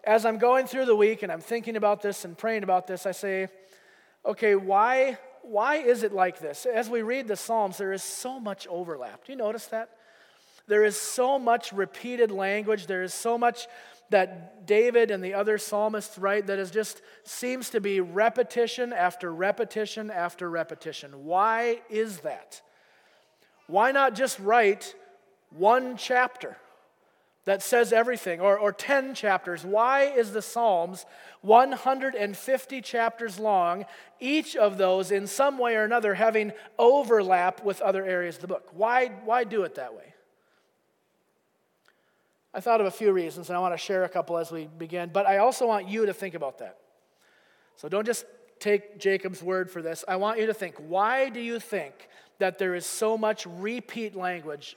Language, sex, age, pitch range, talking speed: English, male, 30-49, 190-235 Hz, 175 wpm